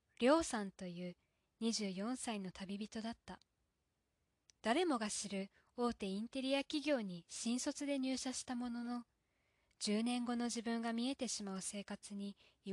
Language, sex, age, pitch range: Japanese, female, 20-39, 195-240 Hz